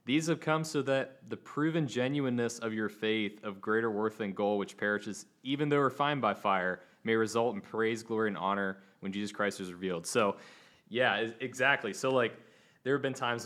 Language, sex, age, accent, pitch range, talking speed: English, male, 20-39, American, 100-120 Hz, 195 wpm